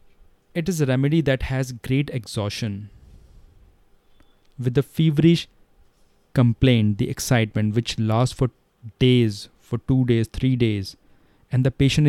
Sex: male